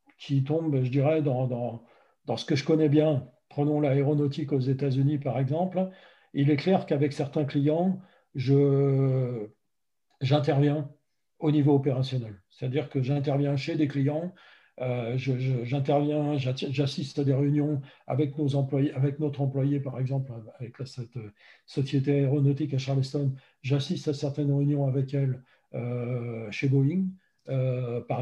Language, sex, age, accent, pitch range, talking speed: French, male, 40-59, French, 135-155 Hz, 145 wpm